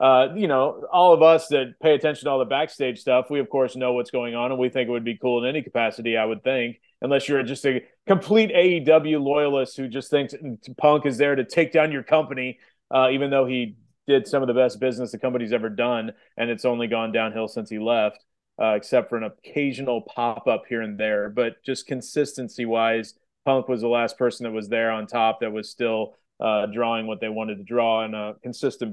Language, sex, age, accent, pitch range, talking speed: English, male, 30-49, American, 120-155 Hz, 230 wpm